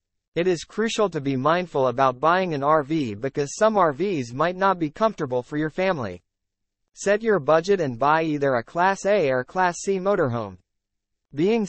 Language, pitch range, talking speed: English, 130-185 Hz, 175 wpm